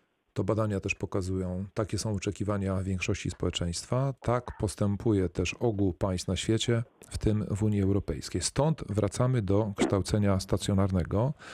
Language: Polish